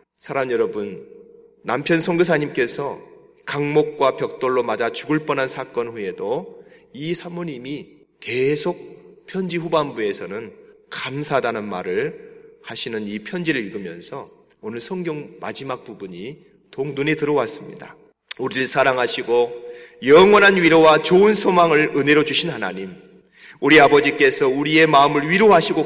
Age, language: 30-49, Korean